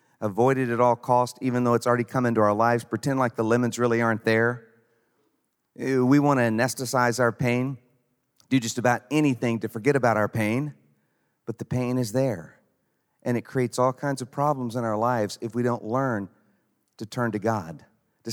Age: 50-69